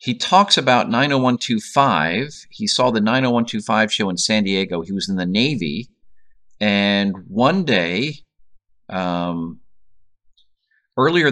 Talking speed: 115 wpm